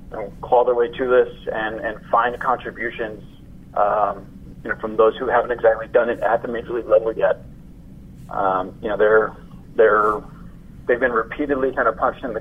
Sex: male